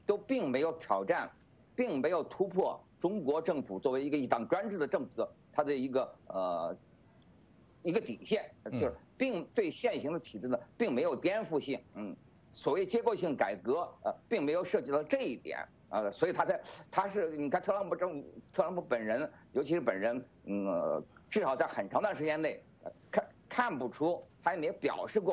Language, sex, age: English, male, 50-69